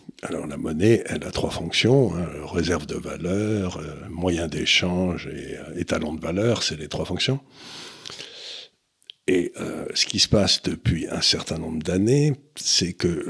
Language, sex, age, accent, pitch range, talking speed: French, male, 60-79, French, 80-105 Hz, 160 wpm